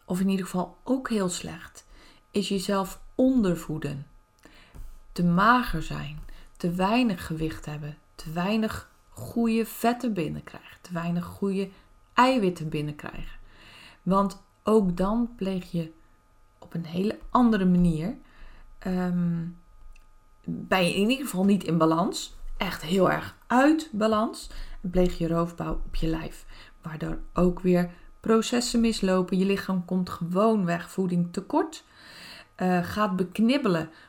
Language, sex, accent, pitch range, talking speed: Dutch, female, Dutch, 165-205 Hz, 125 wpm